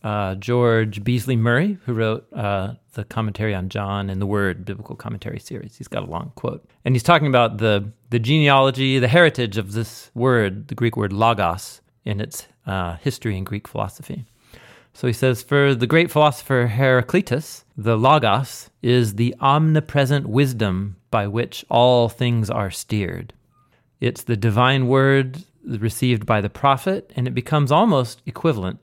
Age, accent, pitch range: 40-59, American, 105-130 Hz